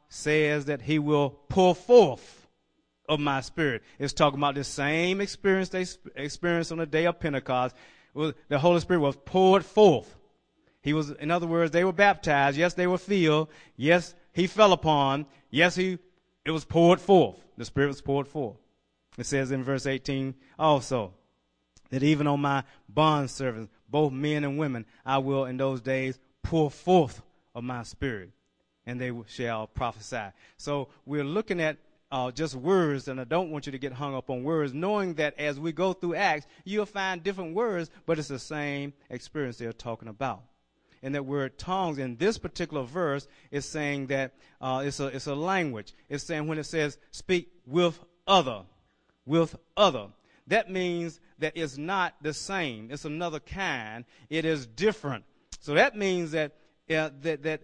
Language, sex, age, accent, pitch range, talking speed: English, male, 30-49, American, 135-170 Hz, 180 wpm